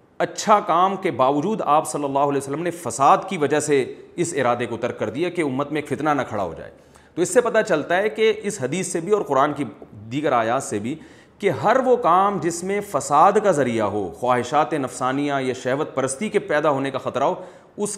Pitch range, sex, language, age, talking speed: 130-185 Hz, male, Urdu, 40-59, 225 wpm